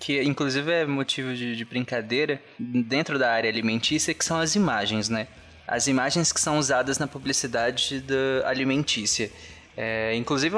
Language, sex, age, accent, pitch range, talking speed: Portuguese, male, 20-39, Brazilian, 125-160 Hz, 150 wpm